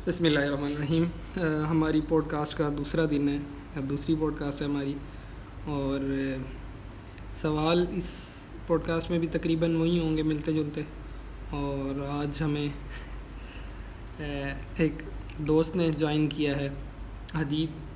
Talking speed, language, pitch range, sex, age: 130 wpm, Urdu, 140-155 Hz, male, 20-39